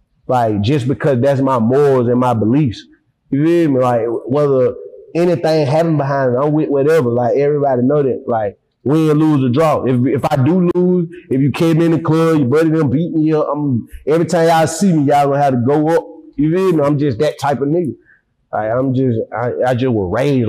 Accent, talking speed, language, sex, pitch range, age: American, 225 wpm, English, male, 130-165 Hz, 20-39